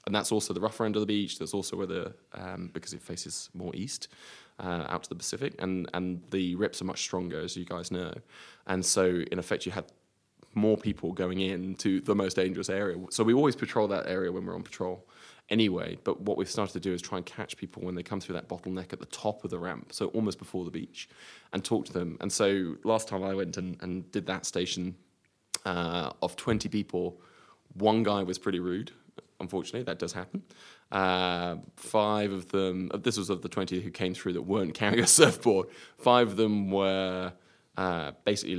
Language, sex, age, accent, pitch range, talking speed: English, male, 20-39, British, 90-100 Hz, 215 wpm